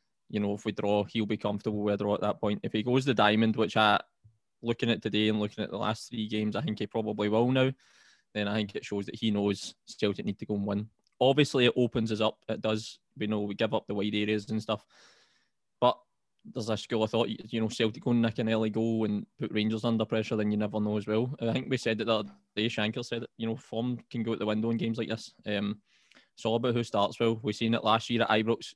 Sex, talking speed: male, 270 wpm